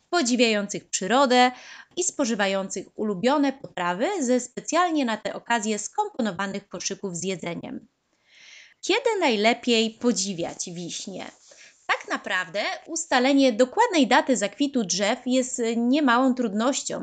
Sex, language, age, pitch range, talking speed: female, Polish, 20-39, 205-270 Hz, 100 wpm